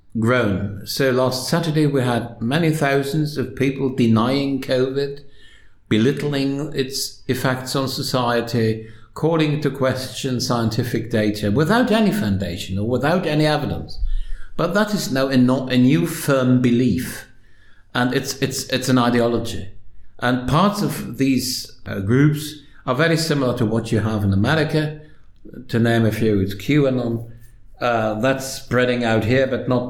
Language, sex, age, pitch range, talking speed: English, male, 60-79, 110-145 Hz, 140 wpm